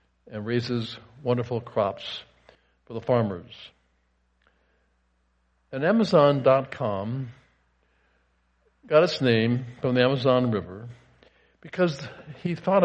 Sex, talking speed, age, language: male, 90 wpm, 60-79, English